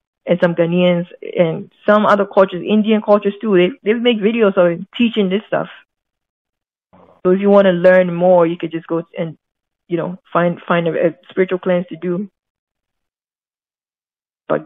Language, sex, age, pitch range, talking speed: English, female, 20-39, 170-195 Hz, 170 wpm